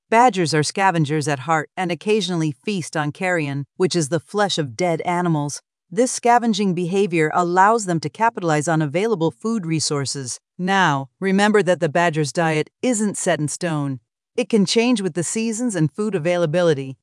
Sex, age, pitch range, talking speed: female, 40-59, 150-200 Hz, 165 wpm